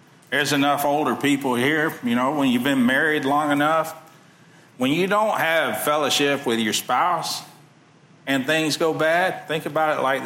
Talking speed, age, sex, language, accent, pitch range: 170 wpm, 50-69, male, English, American, 125-160 Hz